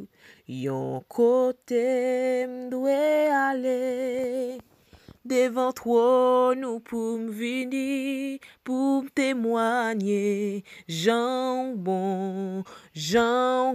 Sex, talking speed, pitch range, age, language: female, 65 wpm, 200-255 Hz, 20-39, French